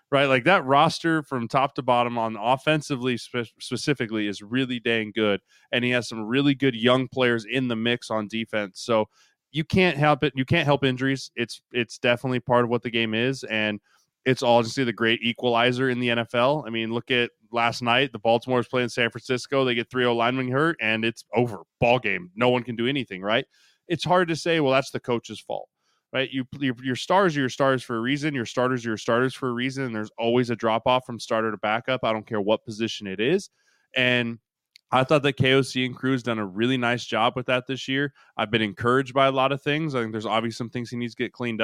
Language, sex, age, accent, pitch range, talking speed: English, male, 20-39, American, 115-135 Hz, 240 wpm